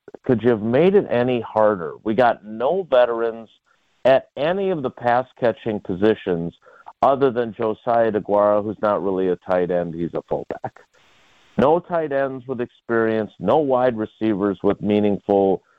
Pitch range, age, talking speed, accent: 95-130 Hz, 50-69, 155 wpm, American